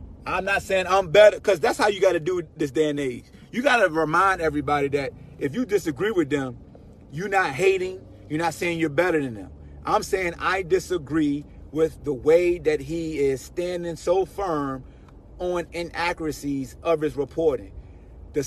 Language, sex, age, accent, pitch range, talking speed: English, male, 30-49, American, 155-245 Hz, 180 wpm